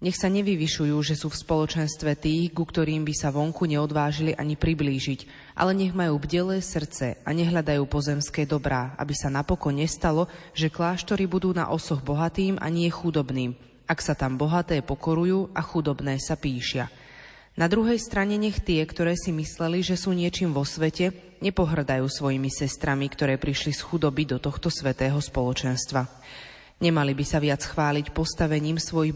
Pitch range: 140-170 Hz